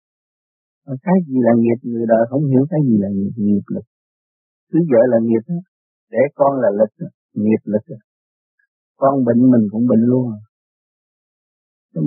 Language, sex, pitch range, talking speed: Vietnamese, male, 110-135 Hz, 150 wpm